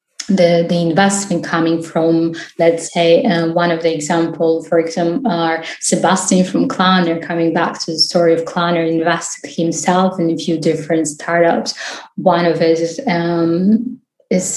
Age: 20-39